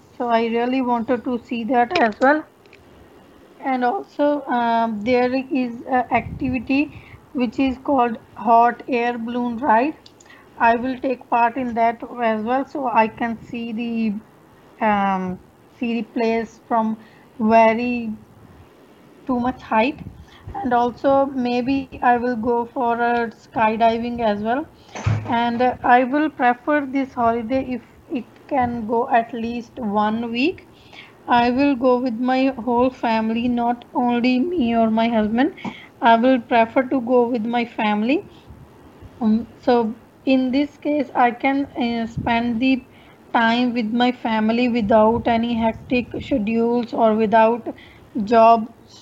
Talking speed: 135 wpm